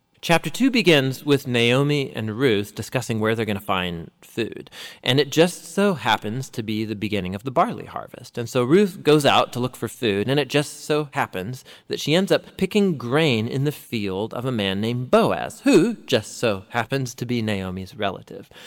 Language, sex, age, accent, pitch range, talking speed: English, male, 30-49, American, 110-145 Hz, 205 wpm